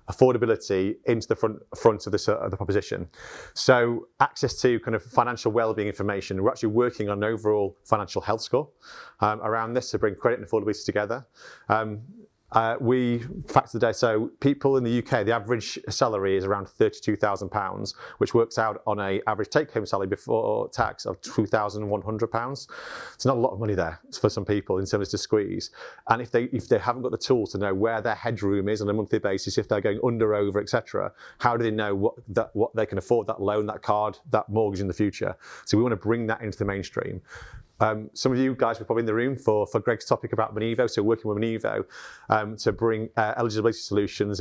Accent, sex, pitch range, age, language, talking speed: British, male, 105-120 Hz, 30-49, English, 225 wpm